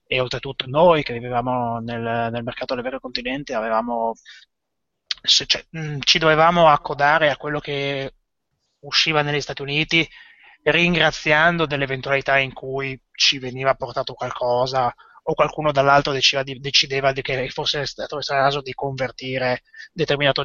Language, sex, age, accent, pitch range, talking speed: Italian, male, 20-39, native, 120-145 Hz, 130 wpm